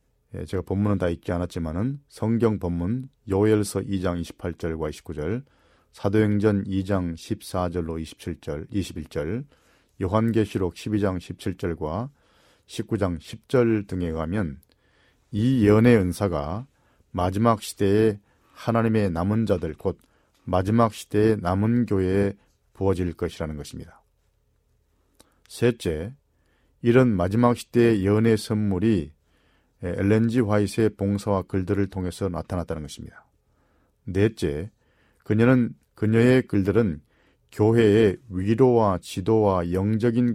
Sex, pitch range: male, 90-115 Hz